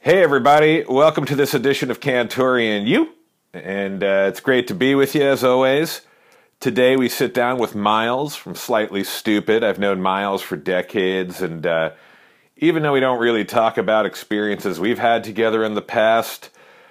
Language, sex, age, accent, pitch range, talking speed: English, male, 40-59, American, 90-120 Hz, 175 wpm